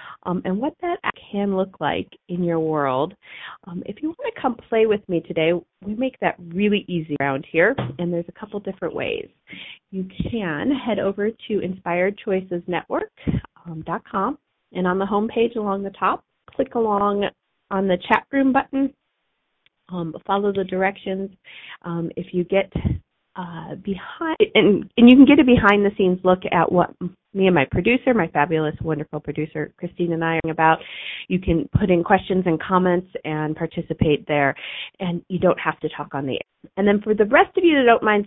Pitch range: 165-210 Hz